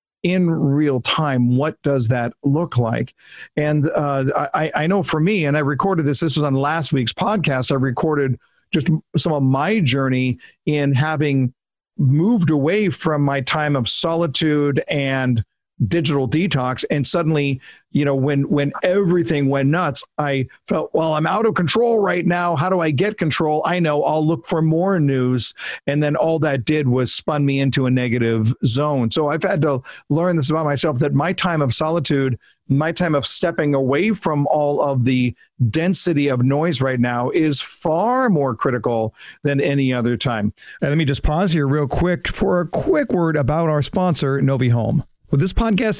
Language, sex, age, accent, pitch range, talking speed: English, male, 50-69, American, 135-170 Hz, 185 wpm